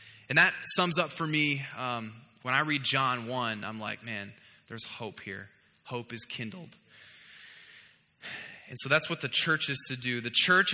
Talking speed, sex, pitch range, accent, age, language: 180 wpm, male, 120-160 Hz, American, 20-39, English